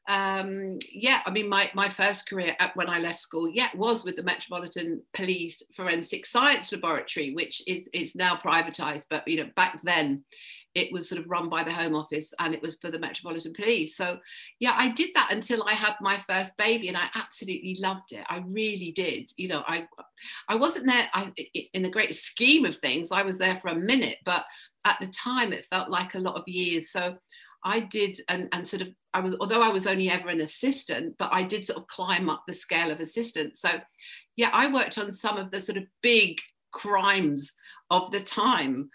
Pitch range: 170-210 Hz